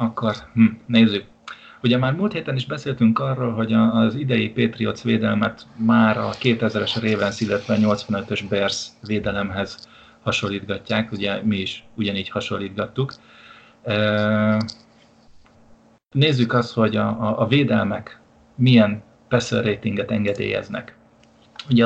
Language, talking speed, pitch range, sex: Hungarian, 115 wpm, 105-115 Hz, male